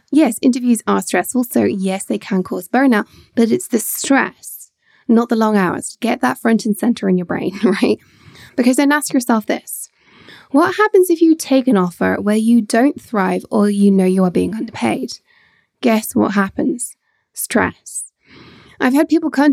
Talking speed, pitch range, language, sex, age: 180 wpm, 210-275 Hz, English, female, 10-29